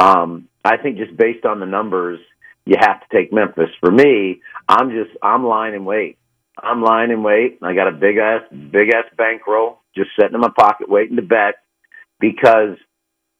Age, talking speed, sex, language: 50-69, 185 wpm, male, English